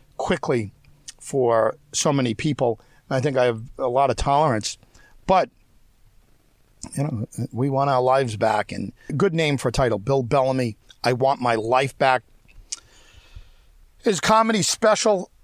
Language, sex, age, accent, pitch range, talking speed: English, male, 50-69, American, 120-160 Hz, 140 wpm